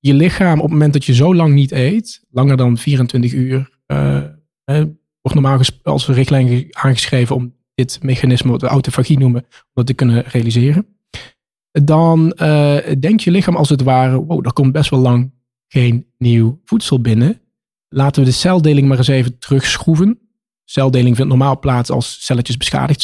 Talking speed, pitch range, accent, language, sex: 175 wpm, 125-155 Hz, Dutch, Dutch, male